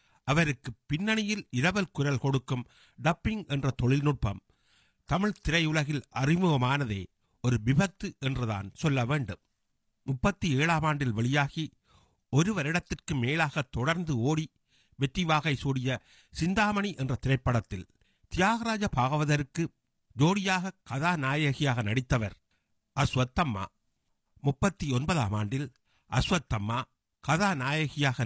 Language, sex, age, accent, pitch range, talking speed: Tamil, male, 50-69, native, 120-160 Hz, 85 wpm